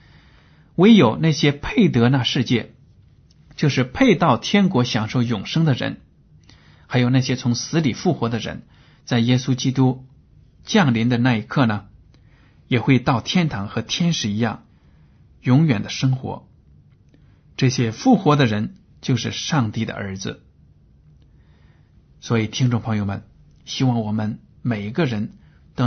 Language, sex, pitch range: Chinese, male, 105-130 Hz